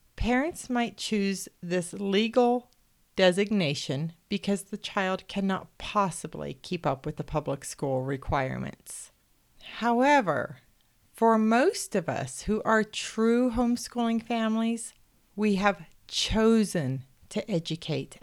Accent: American